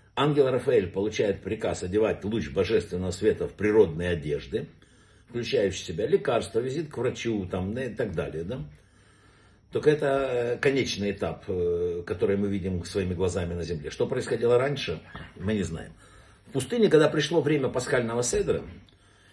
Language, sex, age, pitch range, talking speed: Russian, male, 60-79, 100-140 Hz, 145 wpm